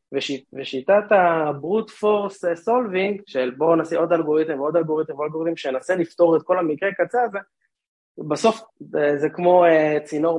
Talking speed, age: 135 wpm, 20-39